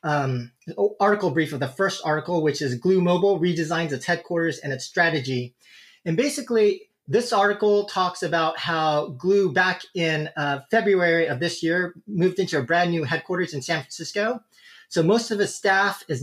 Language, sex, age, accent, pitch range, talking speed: English, male, 30-49, American, 150-185 Hz, 175 wpm